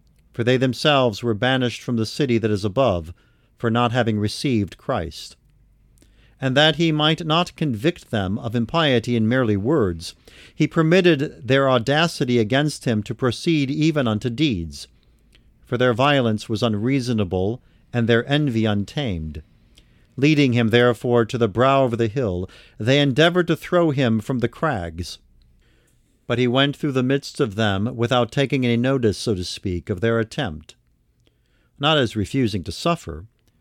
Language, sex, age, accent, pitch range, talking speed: English, male, 50-69, American, 110-140 Hz, 155 wpm